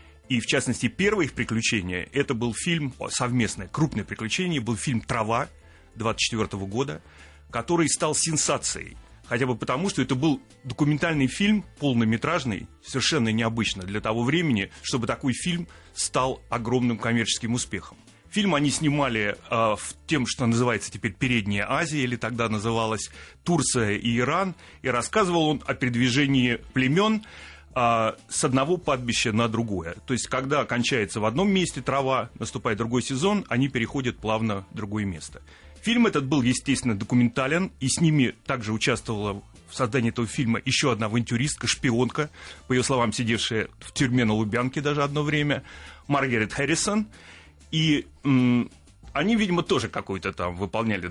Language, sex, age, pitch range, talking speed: Russian, male, 30-49, 110-140 Hz, 145 wpm